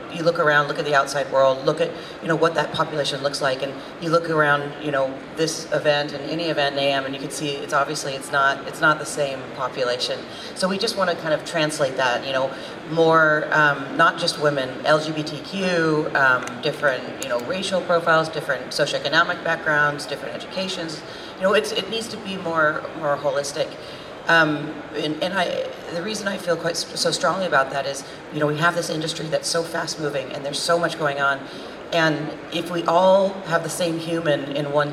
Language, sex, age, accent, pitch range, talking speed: English, female, 40-59, American, 145-170 Hz, 205 wpm